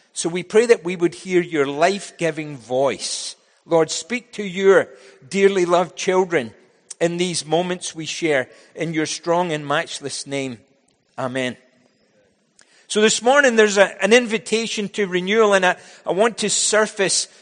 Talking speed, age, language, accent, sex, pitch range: 150 wpm, 50-69, English, British, male, 160-200 Hz